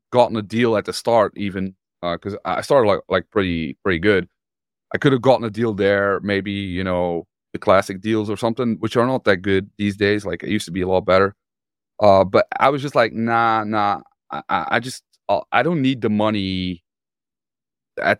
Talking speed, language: 210 wpm, English